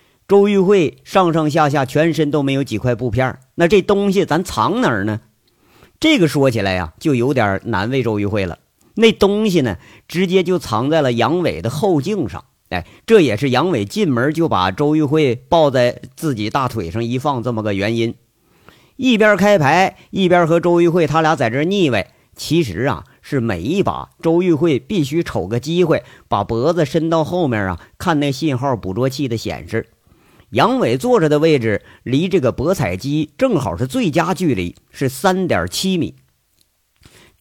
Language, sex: Chinese, male